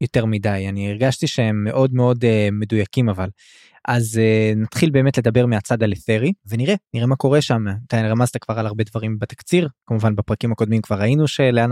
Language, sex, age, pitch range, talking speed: Hebrew, male, 20-39, 110-135 Hz, 180 wpm